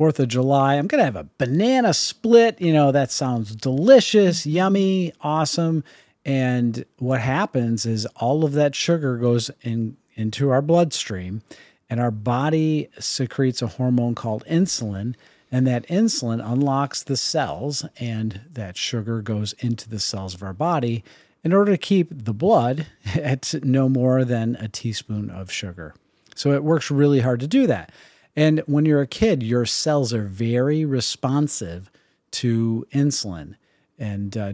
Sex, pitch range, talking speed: male, 110-145 Hz, 155 wpm